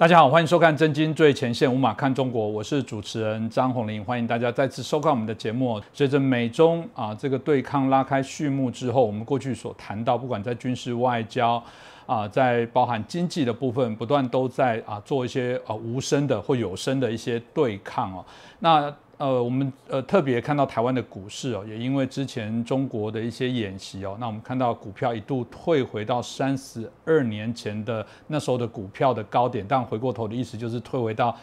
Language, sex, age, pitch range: Chinese, male, 50-69, 115-140 Hz